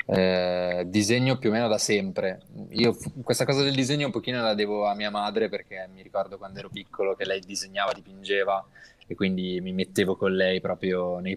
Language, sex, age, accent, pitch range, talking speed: Italian, male, 20-39, native, 100-125 Hz, 200 wpm